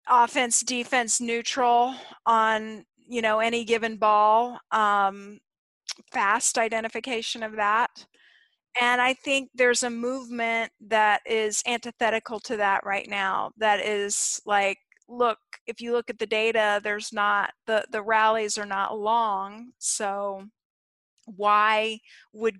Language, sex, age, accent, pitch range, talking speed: English, female, 40-59, American, 210-245 Hz, 125 wpm